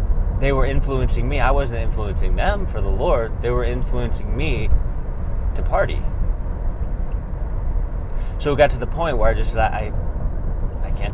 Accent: American